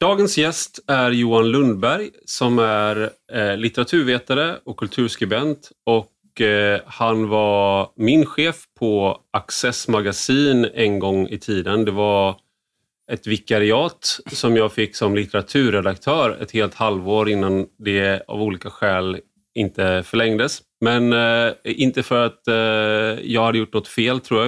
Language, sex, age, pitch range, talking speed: Swedish, male, 30-49, 100-125 Hz, 125 wpm